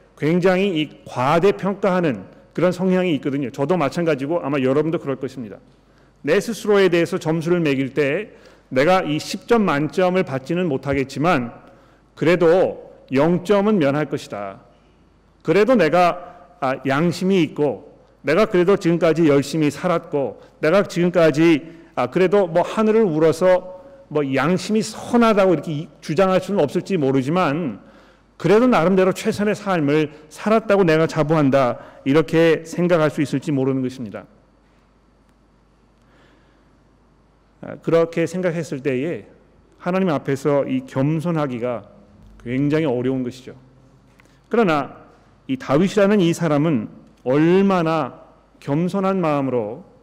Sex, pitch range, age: male, 140-185 Hz, 40-59